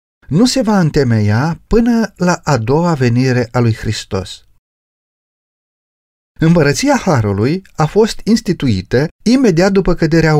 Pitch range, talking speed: 120-180 Hz, 115 wpm